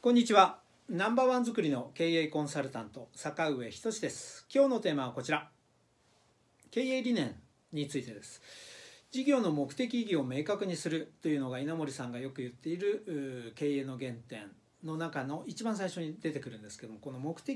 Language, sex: Japanese, male